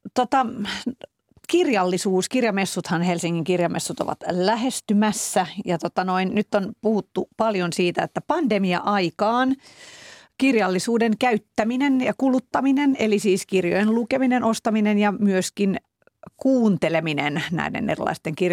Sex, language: female, Finnish